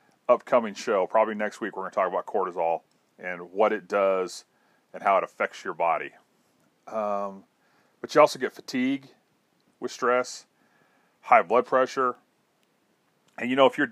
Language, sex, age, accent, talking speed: English, male, 40-59, American, 160 wpm